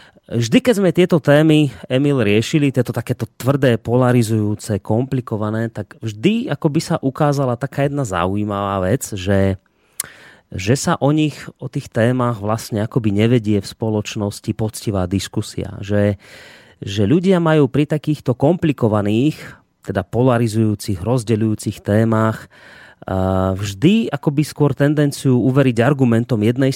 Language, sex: Slovak, male